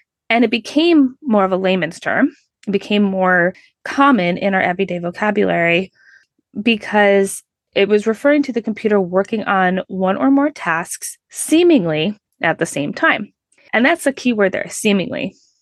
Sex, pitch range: female, 185-265 Hz